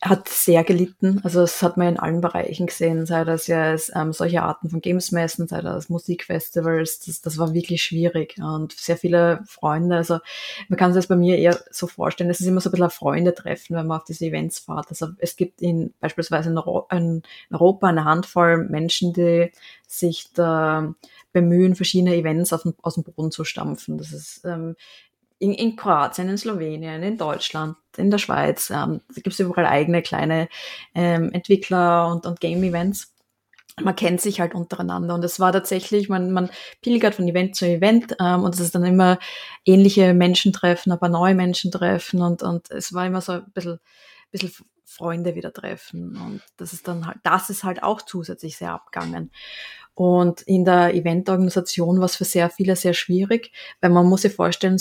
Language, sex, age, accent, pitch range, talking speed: German, female, 20-39, German, 170-190 Hz, 190 wpm